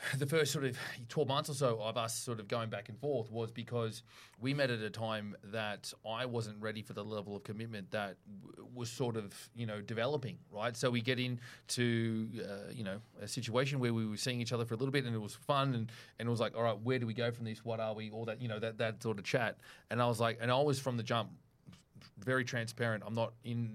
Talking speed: 265 wpm